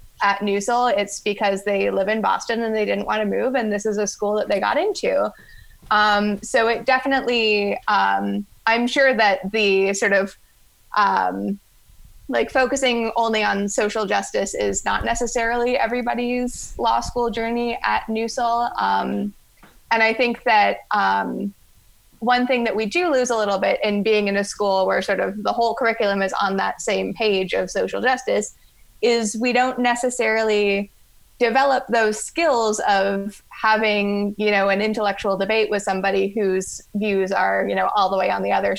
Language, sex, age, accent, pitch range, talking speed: English, female, 20-39, American, 195-235 Hz, 170 wpm